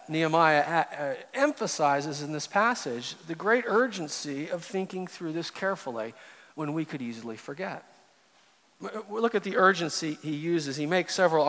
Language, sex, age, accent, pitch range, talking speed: English, male, 40-59, American, 150-195 Hz, 140 wpm